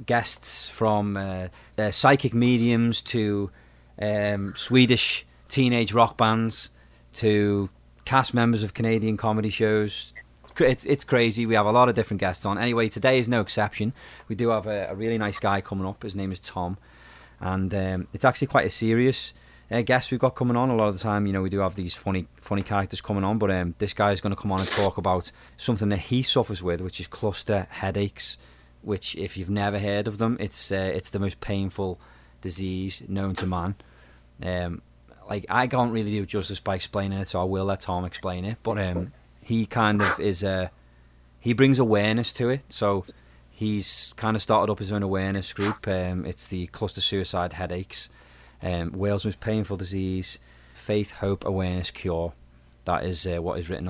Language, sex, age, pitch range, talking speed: English, male, 20-39, 90-110 Hz, 195 wpm